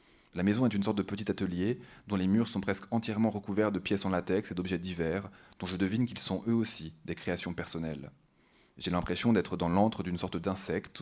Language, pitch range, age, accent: French, 85-100 Hz, 20-39, French